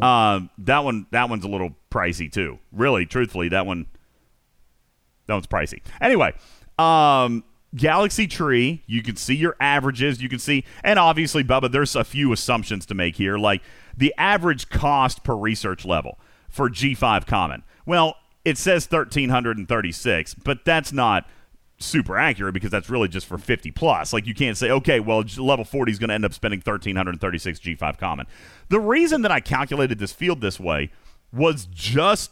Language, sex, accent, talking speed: English, male, American, 190 wpm